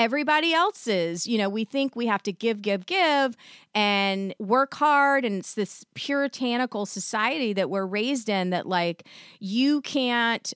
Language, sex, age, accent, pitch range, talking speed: English, female, 30-49, American, 185-255 Hz, 160 wpm